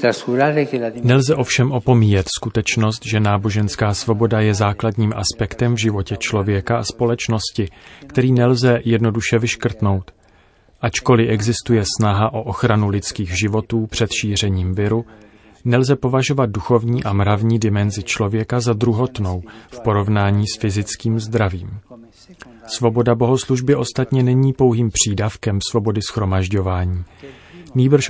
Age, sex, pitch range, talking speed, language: 30-49, male, 105-120 Hz, 110 wpm, Czech